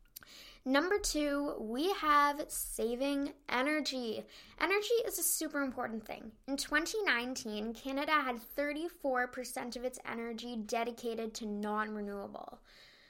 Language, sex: English, female